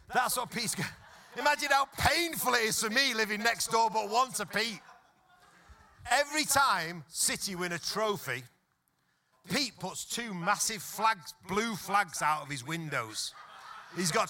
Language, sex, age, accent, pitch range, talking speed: English, male, 40-59, British, 155-240 Hz, 155 wpm